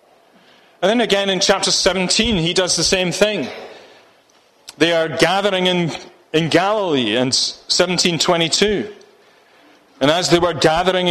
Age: 30-49